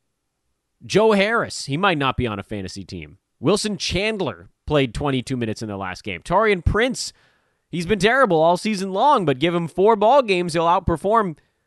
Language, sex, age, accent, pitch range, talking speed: English, male, 30-49, American, 115-175 Hz, 180 wpm